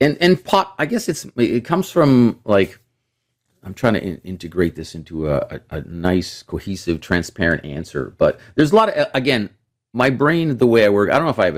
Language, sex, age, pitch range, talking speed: English, male, 40-59, 85-120 Hz, 220 wpm